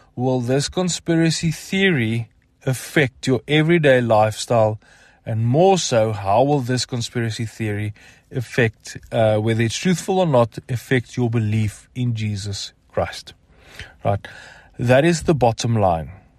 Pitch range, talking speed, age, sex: 110-135 Hz, 130 wpm, 30-49, male